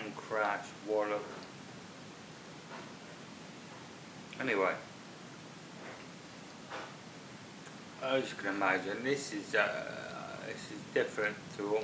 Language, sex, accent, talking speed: English, male, British, 80 wpm